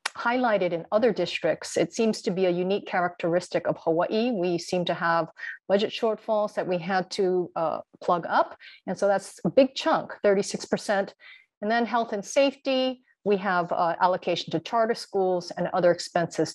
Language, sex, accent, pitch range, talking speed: English, female, American, 175-230 Hz, 180 wpm